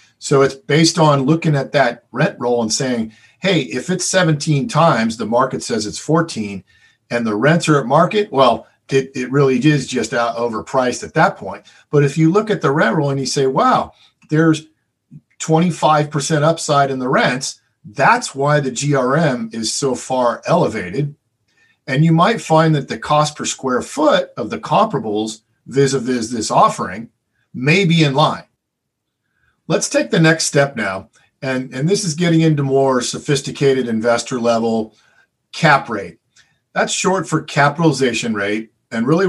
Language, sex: English, male